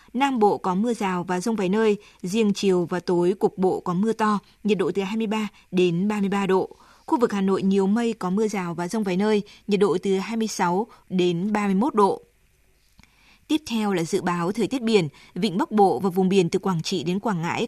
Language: Vietnamese